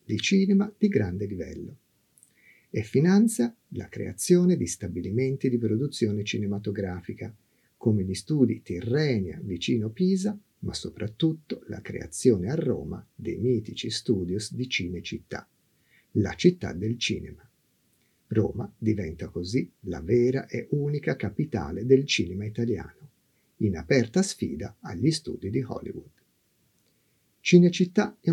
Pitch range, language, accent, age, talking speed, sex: 105-145 Hz, Italian, native, 50-69, 115 wpm, male